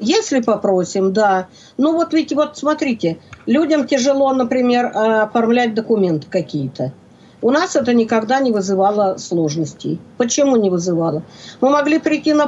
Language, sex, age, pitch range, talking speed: Russian, female, 50-69, 185-250 Hz, 135 wpm